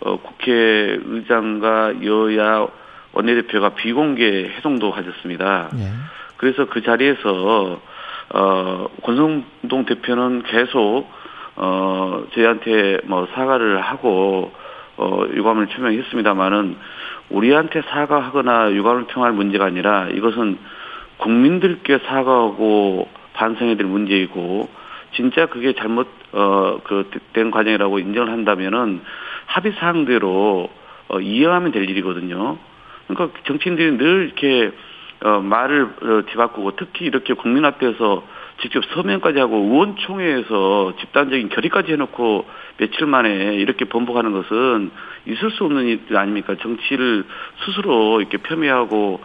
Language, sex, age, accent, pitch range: Korean, male, 40-59, native, 100-130 Hz